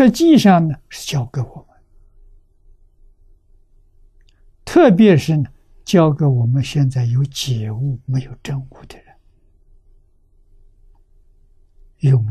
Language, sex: Chinese, male